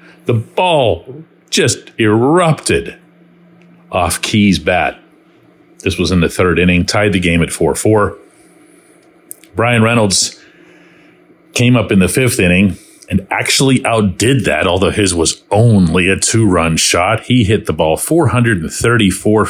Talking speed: 130 wpm